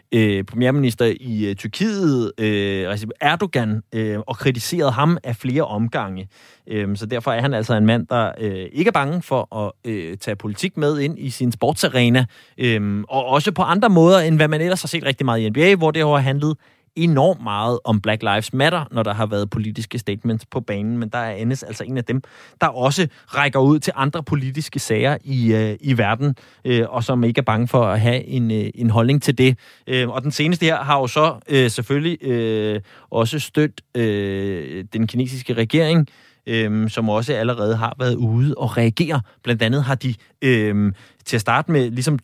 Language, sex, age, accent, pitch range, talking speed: Danish, male, 30-49, native, 110-140 Hz, 200 wpm